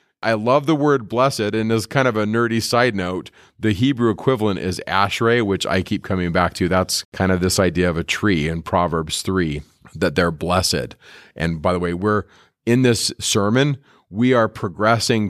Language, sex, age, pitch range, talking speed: English, male, 40-59, 90-120 Hz, 190 wpm